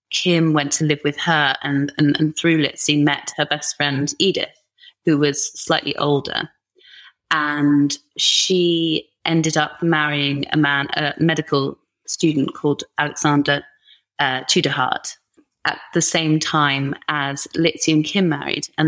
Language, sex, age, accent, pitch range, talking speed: English, female, 30-49, British, 145-160 Hz, 140 wpm